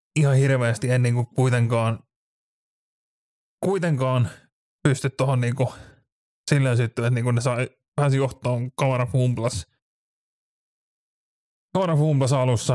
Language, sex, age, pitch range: Finnish, male, 20-39, 125-140 Hz